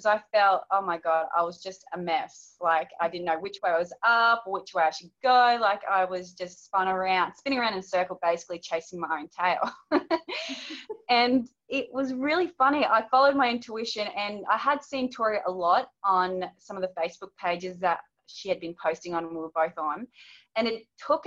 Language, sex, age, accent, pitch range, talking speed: English, female, 20-39, Australian, 180-225 Hz, 215 wpm